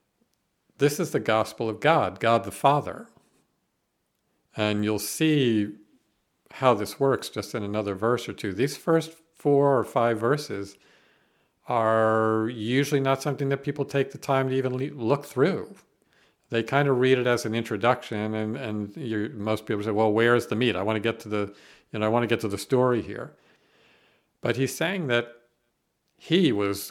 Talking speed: 175 wpm